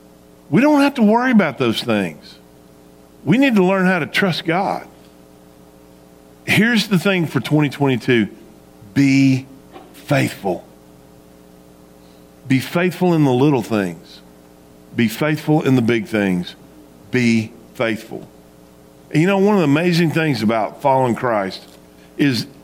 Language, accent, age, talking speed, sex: English, American, 50-69, 125 wpm, male